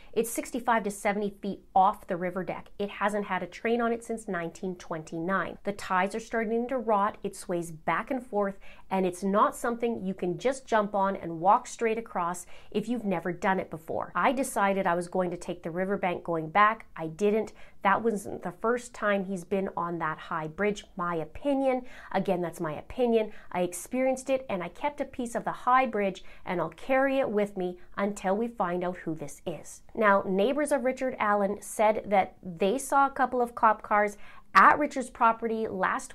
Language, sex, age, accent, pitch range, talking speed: English, female, 30-49, American, 180-230 Hz, 200 wpm